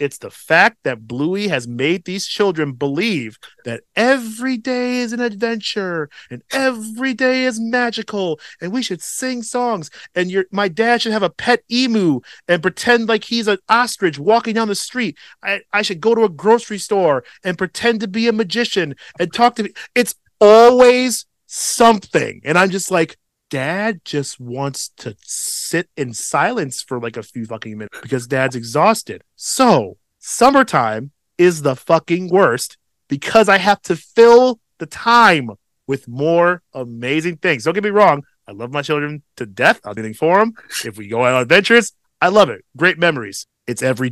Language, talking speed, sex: English, 175 wpm, male